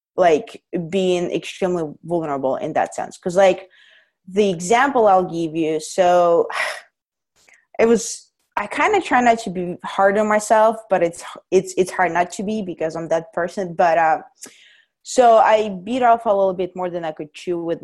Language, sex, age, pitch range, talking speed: English, female, 20-39, 170-220 Hz, 180 wpm